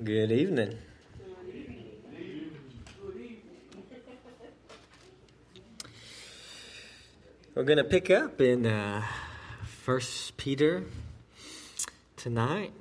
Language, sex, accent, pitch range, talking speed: English, male, American, 100-125 Hz, 55 wpm